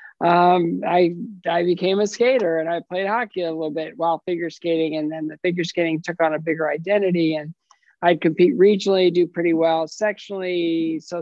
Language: English